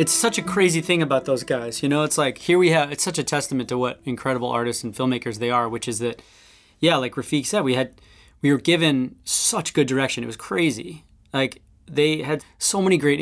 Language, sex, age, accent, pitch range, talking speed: English, male, 20-39, American, 115-140 Hz, 230 wpm